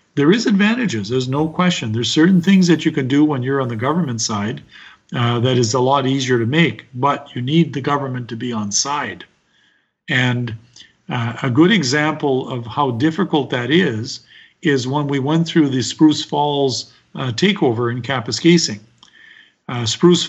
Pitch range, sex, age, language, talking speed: 125-160 Hz, male, 50-69, English, 180 wpm